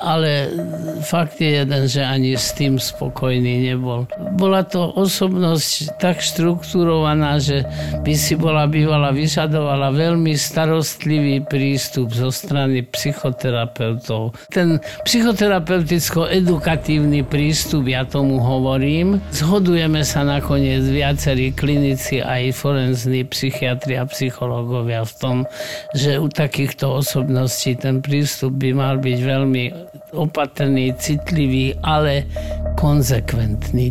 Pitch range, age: 135-170 Hz, 50-69